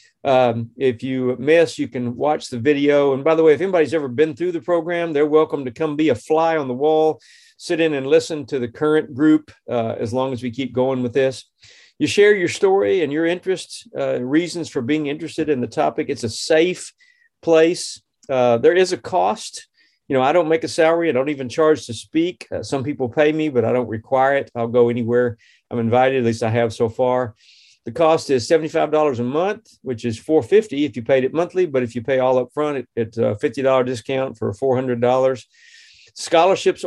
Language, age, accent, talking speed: English, 50-69, American, 215 wpm